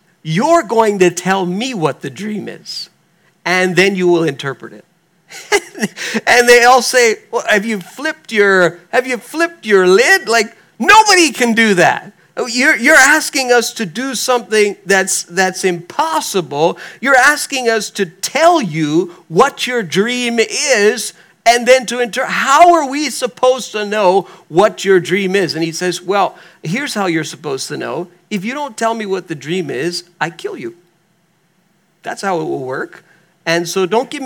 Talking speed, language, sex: 175 wpm, English, male